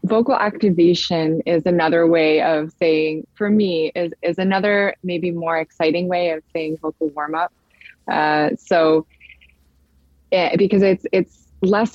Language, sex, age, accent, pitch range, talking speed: English, female, 20-39, American, 155-180 Hz, 140 wpm